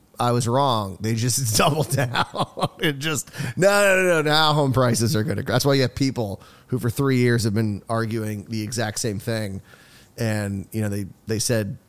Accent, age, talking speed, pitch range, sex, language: American, 30-49, 205 wpm, 110-135 Hz, male, English